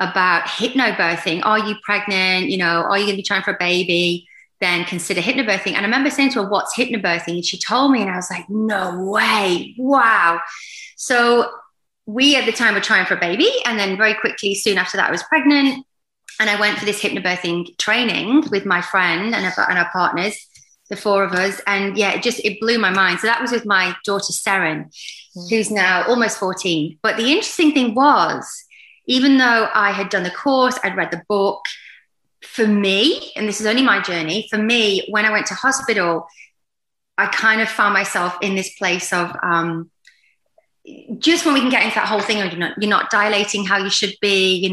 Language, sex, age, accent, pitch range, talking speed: English, female, 30-49, British, 185-235 Hz, 205 wpm